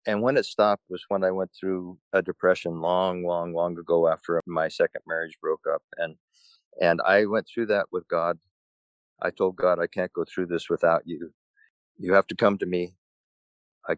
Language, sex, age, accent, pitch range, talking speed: English, male, 50-69, American, 85-105 Hz, 195 wpm